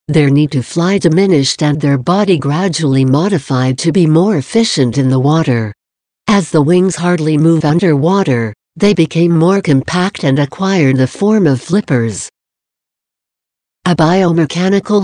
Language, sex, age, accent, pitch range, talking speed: English, female, 60-79, American, 135-180 Hz, 140 wpm